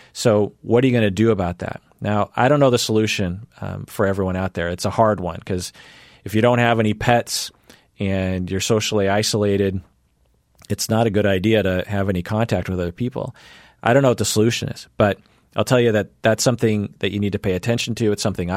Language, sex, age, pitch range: English, male, 40-59, 95-115 Hz